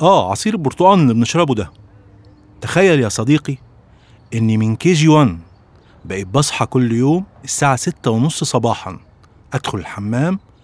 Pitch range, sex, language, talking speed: 105-145 Hz, male, Arabic, 130 wpm